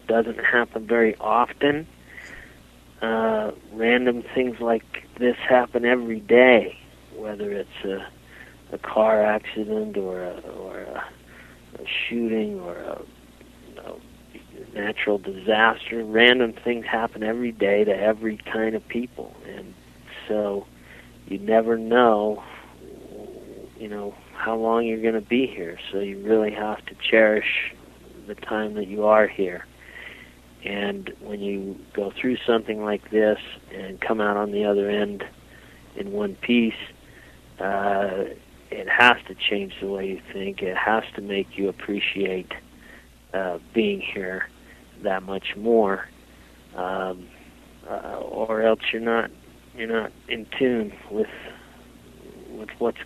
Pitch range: 95-115 Hz